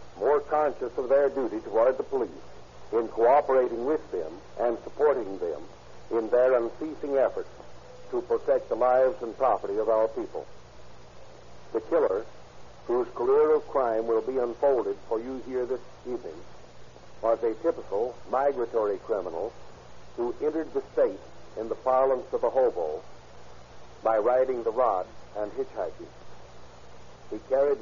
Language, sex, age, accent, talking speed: English, male, 60-79, American, 140 wpm